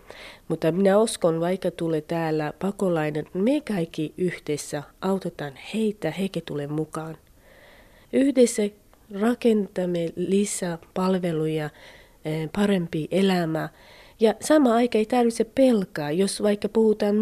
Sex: female